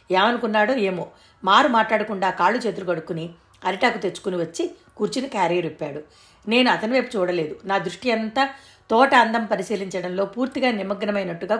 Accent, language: native, Telugu